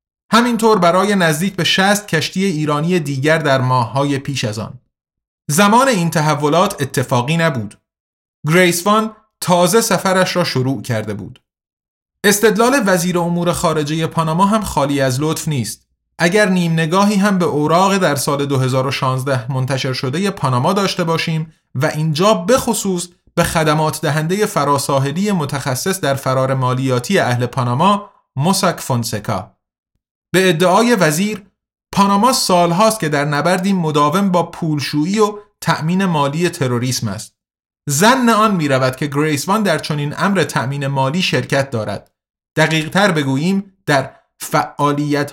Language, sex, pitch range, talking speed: Persian, male, 140-190 Hz, 130 wpm